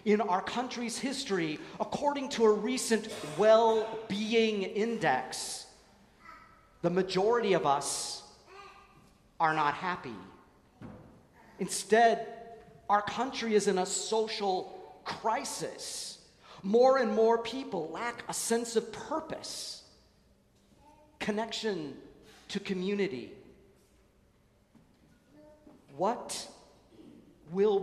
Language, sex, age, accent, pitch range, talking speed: English, male, 40-59, American, 175-230 Hz, 85 wpm